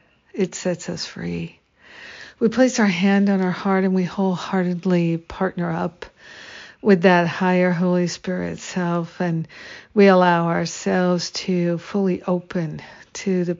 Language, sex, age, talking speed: English, female, 60-79, 135 wpm